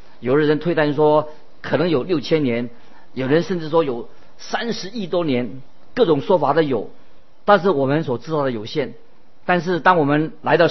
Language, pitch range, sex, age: Chinese, 130-170 Hz, male, 50-69